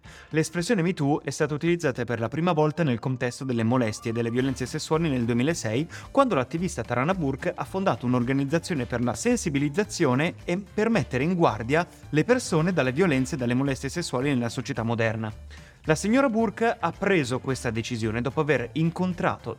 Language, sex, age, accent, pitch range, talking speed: Italian, male, 30-49, native, 120-170 Hz, 170 wpm